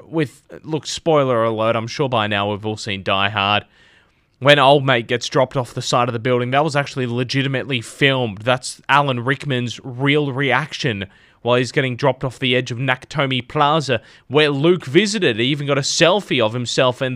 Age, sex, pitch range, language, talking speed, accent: 20-39, male, 125-165 Hz, English, 190 wpm, Australian